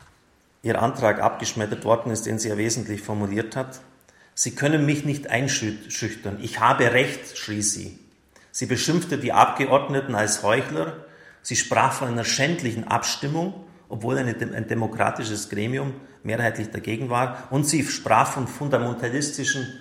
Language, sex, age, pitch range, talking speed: German, male, 40-59, 105-130 Hz, 140 wpm